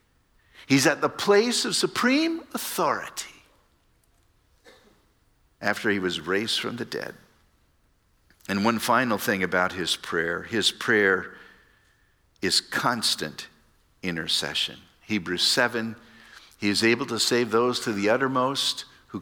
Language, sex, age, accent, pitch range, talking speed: English, male, 50-69, American, 100-145 Hz, 120 wpm